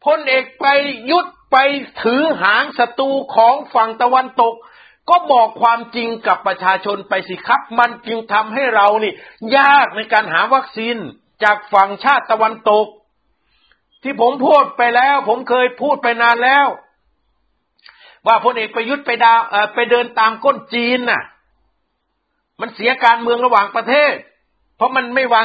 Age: 60-79